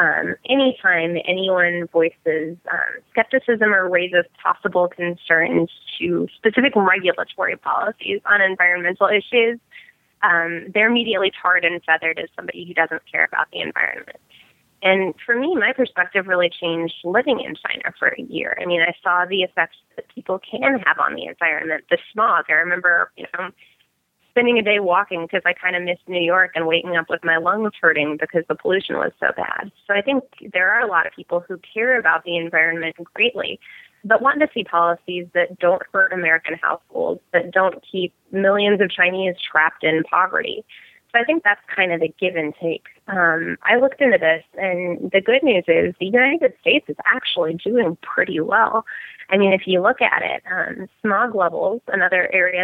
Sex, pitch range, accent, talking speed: female, 170-230 Hz, American, 185 wpm